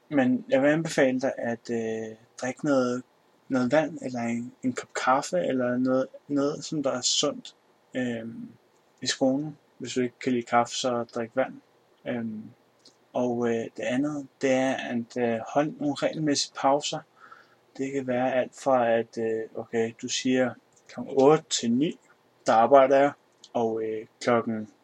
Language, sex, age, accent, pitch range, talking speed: Danish, male, 20-39, native, 115-135 Hz, 160 wpm